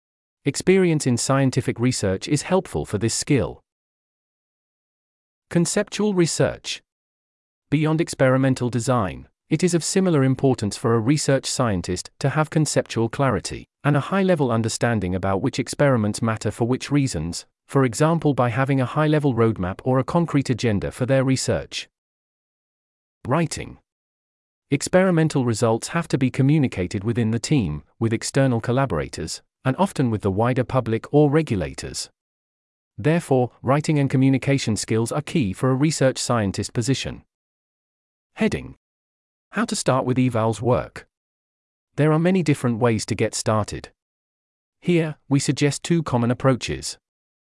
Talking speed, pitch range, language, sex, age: 135 wpm, 105-145 Hz, English, male, 40-59